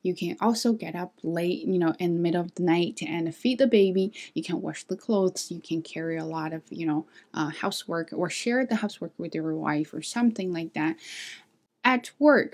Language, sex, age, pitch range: Chinese, female, 20-39, 170-225 Hz